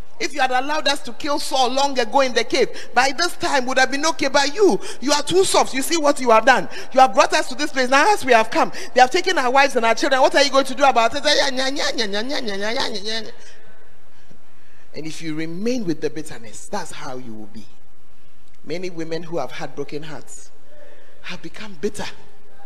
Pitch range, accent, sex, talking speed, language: 175-280 Hz, Nigerian, male, 215 wpm, English